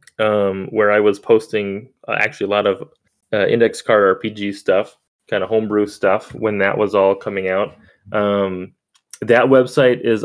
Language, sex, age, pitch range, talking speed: English, male, 20-39, 95-120 Hz, 170 wpm